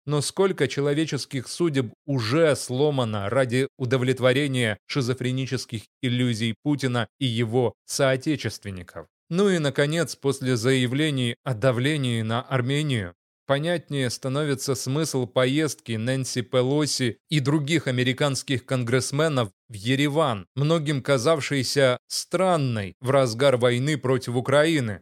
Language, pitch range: Russian, 125-150 Hz